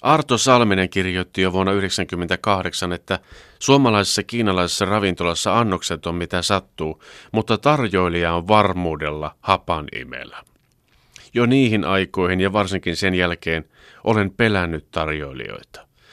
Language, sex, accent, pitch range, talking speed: Finnish, male, native, 85-110 Hz, 110 wpm